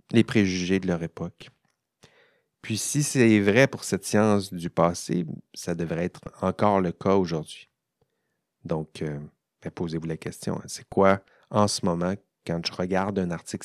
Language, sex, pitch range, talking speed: French, male, 95-110 Hz, 165 wpm